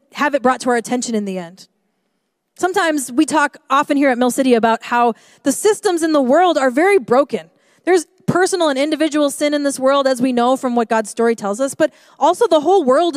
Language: English